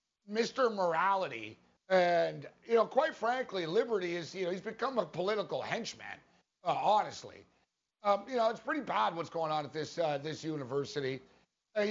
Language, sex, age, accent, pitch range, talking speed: English, male, 60-79, American, 165-230 Hz, 165 wpm